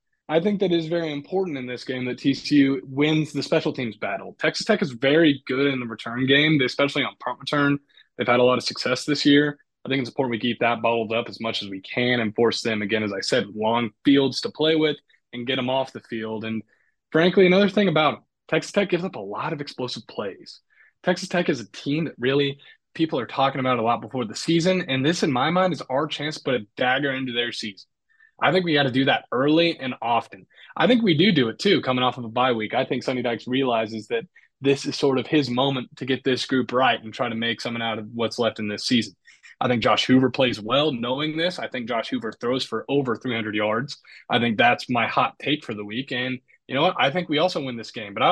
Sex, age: male, 20-39